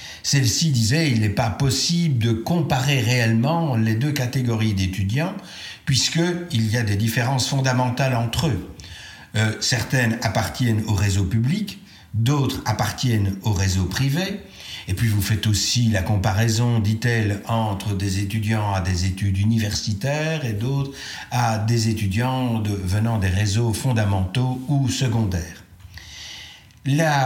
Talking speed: 135 wpm